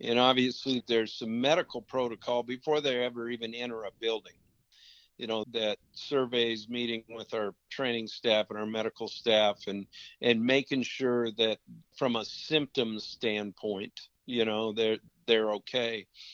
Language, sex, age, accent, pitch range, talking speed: English, male, 50-69, American, 110-125 Hz, 145 wpm